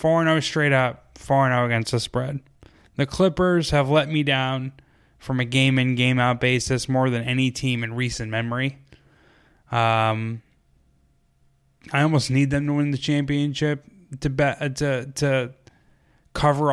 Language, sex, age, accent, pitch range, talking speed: English, male, 10-29, American, 125-150 Hz, 160 wpm